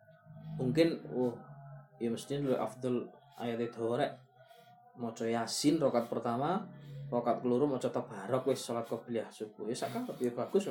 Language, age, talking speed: Malay, 20-39, 140 wpm